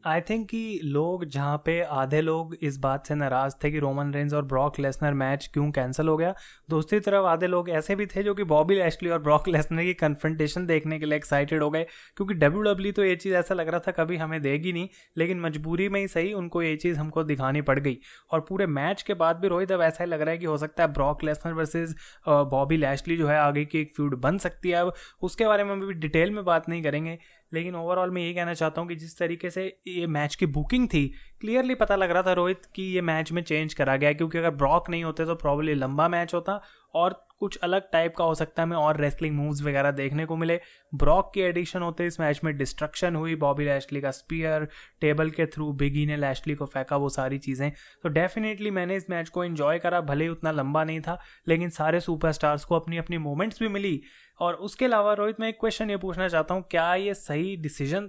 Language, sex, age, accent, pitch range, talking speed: Hindi, male, 20-39, native, 150-180 Hz, 240 wpm